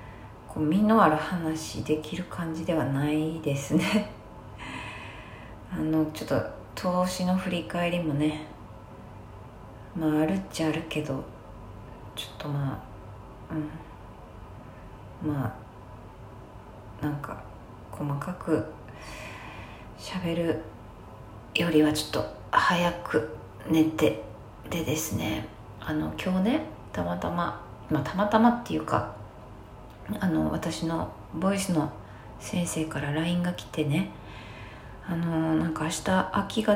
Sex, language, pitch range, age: female, Japanese, 110-160 Hz, 40-59